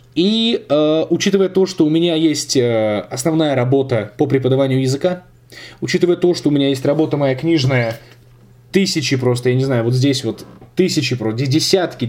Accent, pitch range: native, 125-165 Hz